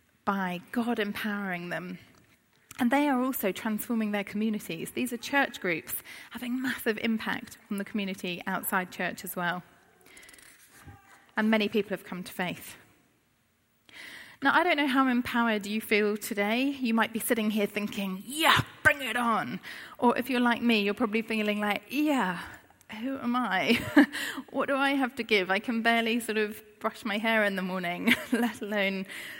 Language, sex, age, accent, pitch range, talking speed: English, female, 30-49, British, 185-235 Hz, 170 wpm